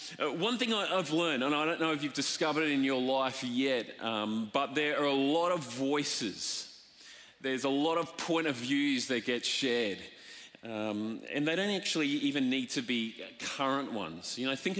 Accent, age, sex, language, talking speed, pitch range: Australian, 30-49, male, English, 195 wpm, 140-180 Hz